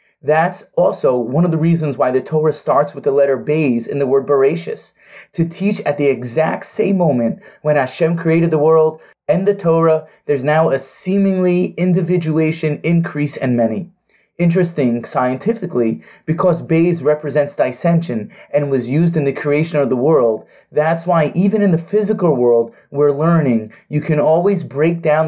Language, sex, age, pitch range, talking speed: English, male, 30-49, 145-180 Hz, 165 wpm